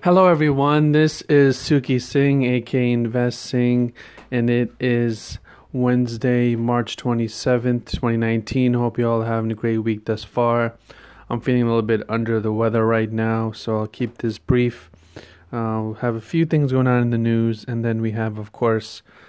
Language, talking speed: English, 180 wpm